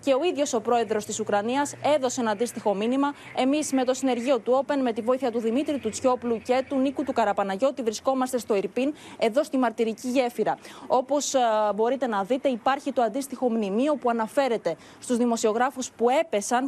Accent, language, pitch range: native, Greek, 220-270 Hz